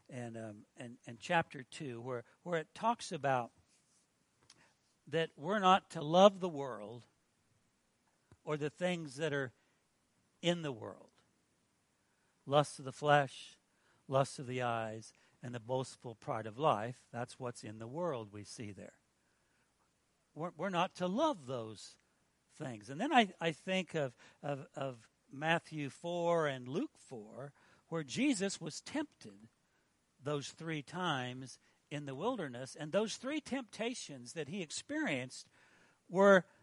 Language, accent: English, American